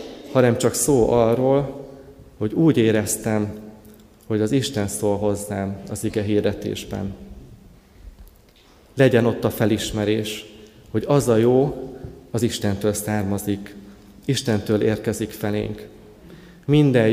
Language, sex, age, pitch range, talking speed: Hungarian, male, 30-49, 105-125 Hz, 105 wpm